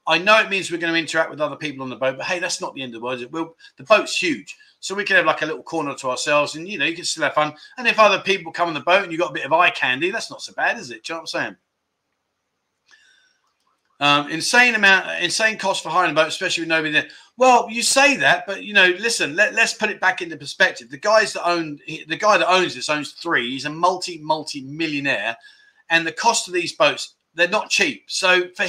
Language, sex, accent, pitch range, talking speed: English, male, British, 155-230 Hz, 270 wpm